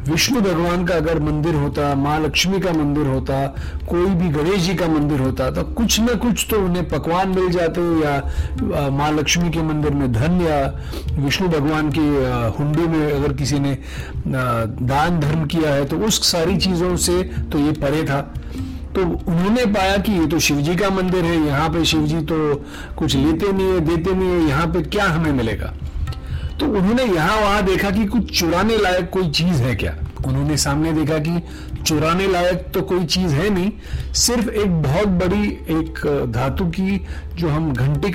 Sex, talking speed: male, 185 wpm